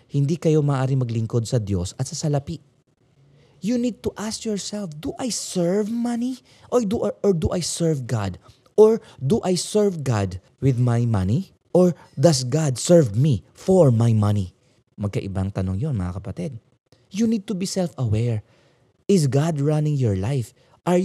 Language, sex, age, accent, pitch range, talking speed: Filipino, male, 20-39, native, 110-160 Hz, 165 wpm